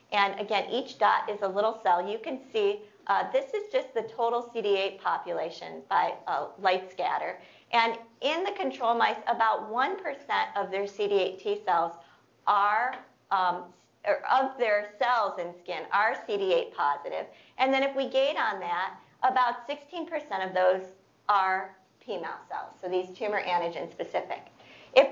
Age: 50-69